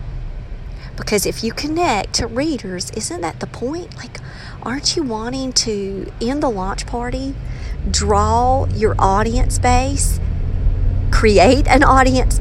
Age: 50-69